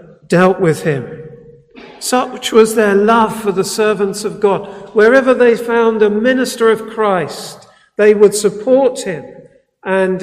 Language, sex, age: English, male, 50-69